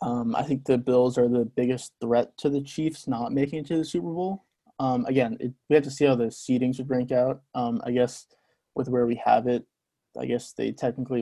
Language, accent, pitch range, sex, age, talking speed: English, American, 125-140 Hz, male, 20-39, 230 wpm